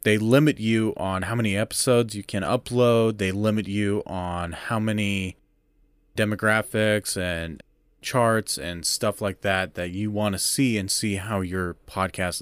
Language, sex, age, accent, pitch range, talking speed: English, male, 30-49, American, 95-115 Hz, 160 wpm